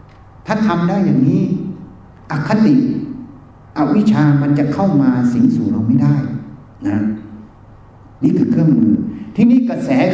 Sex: male